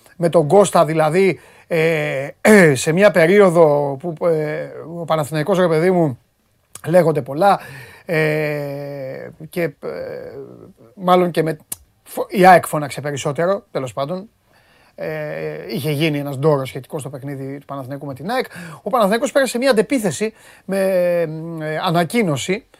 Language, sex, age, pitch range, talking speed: Greek, male, 30-49, 145-195 Hz, 115 wpm